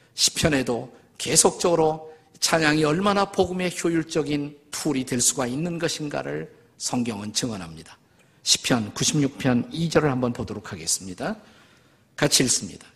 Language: Korean